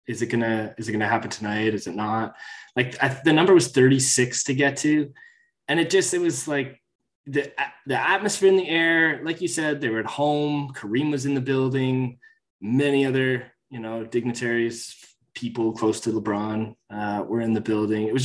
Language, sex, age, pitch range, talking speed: English, male, 20-39, 110-135 Hz, 205 wpm